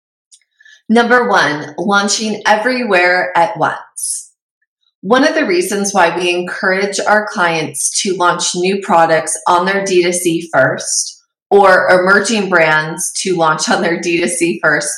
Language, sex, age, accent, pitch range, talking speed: English, female, 30-49, American, 170-210 Hz, 130 wpm